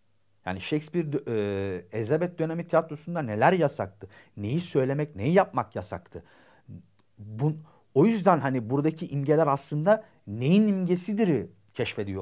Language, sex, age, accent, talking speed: Turkish, male, 50-69, native, 115 wpm